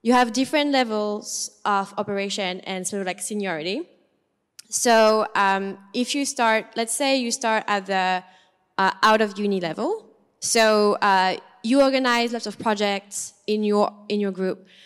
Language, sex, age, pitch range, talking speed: English, female, 20-39, 195-225 Hz, 160 wpm